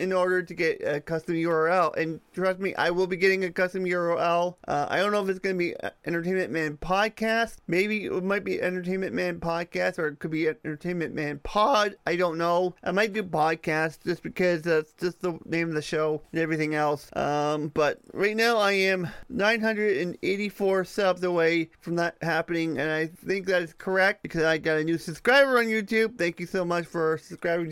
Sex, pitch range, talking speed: male, 165-195 Hz, 205 wpm